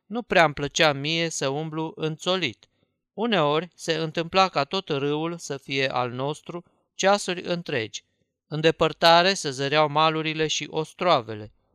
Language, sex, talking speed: Romanian, male, 135 wpm